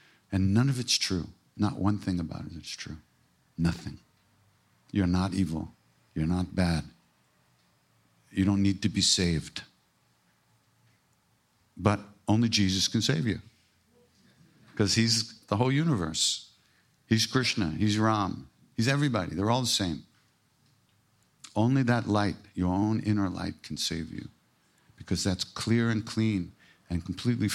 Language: English